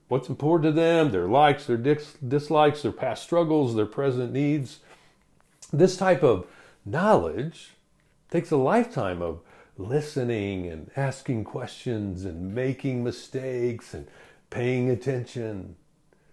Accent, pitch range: American, 105-150 Hz